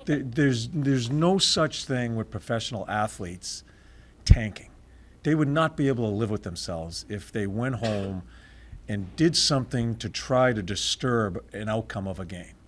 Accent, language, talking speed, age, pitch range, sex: American, English, 160 wpm, 50-69, 100-140 Hz, male